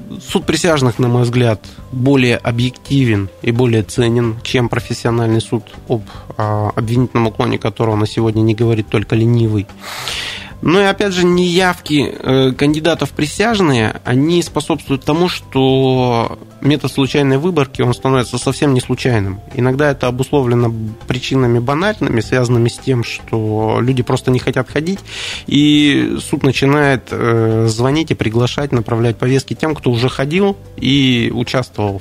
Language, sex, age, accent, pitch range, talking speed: Russian, male, 20-39, native, 110-135 Hz, 130 wpm